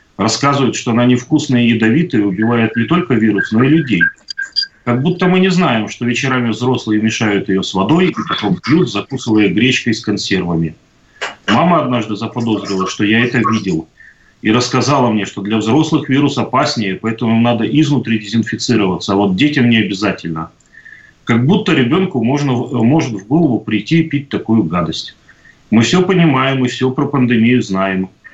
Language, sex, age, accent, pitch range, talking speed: Russian, male, 30-49, native, 110-145 Hz, 160 wpm